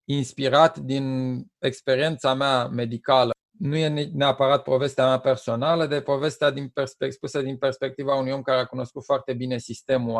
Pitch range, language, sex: 125-150 Hz, Romanian, male